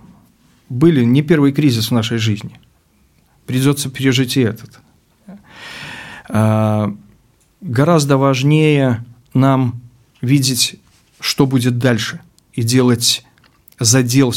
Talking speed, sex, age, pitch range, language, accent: 90 wpm, male, 40-59, 110-135 Hz, Russian, native